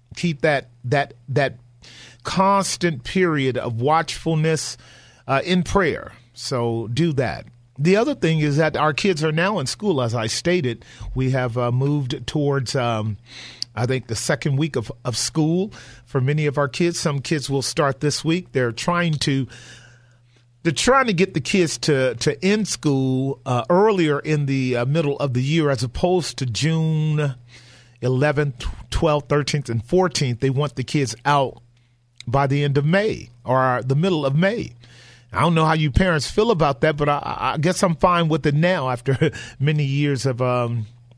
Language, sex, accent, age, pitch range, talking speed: English, male, American, 40-59, 125-160 Hz, 175 wpm